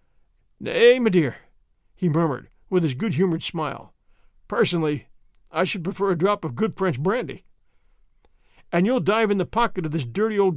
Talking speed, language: 165 wpm, English